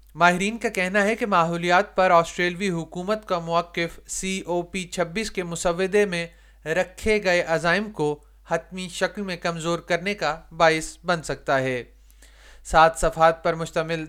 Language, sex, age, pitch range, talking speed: Urdu, male, 30-49, 160-185 Hz, 155 wpm